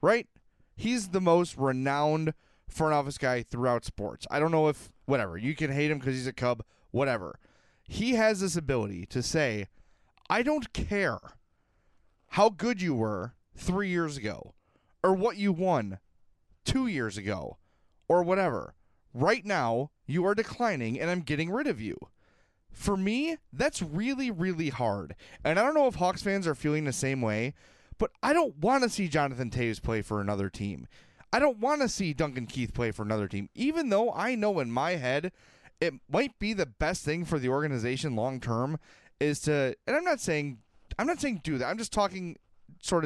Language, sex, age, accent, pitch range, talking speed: English, male, 30-49, American, 125-190 Hz, 185 wpm